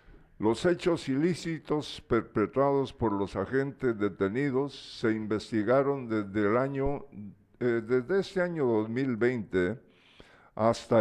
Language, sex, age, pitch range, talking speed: Spanish, male, 60-79, 100-140 Hz, 105 wpm